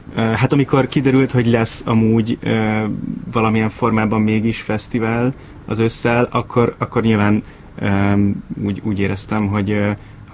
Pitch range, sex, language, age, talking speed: 105-120 Hz, male, Hungarian, 20-39, 135 wpm